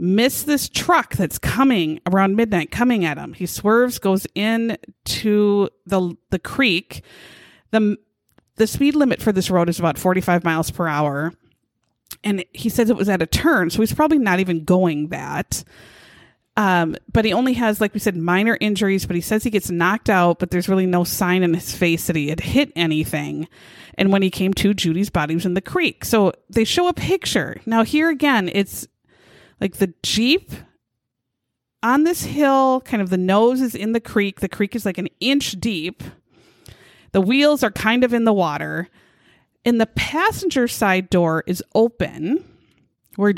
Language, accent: English, American